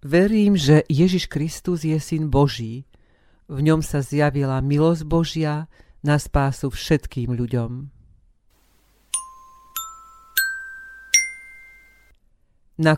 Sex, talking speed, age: female, 85 wpm, 50-69